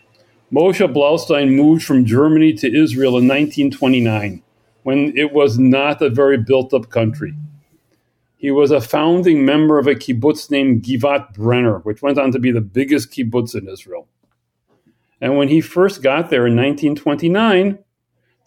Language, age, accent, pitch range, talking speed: English, 40-59, American, 115-150 Hz, 150 wpm